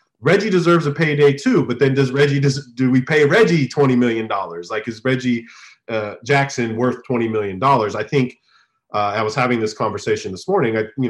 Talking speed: 195 wpm